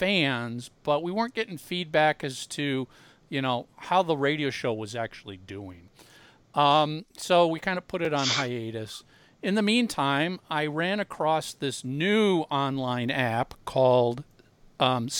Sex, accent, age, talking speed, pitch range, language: male, American, 50-69, 150 wpm, 125-170 Hz, English